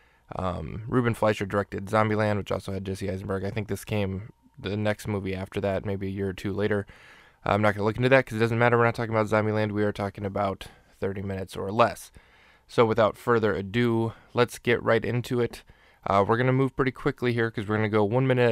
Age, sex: 20-39, male